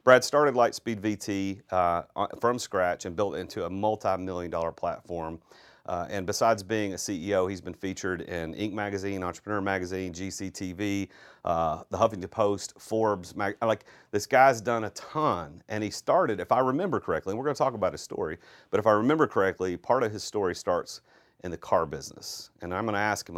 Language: English